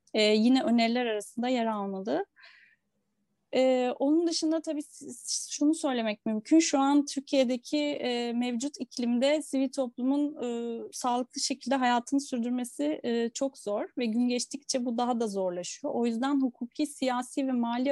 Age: 30-49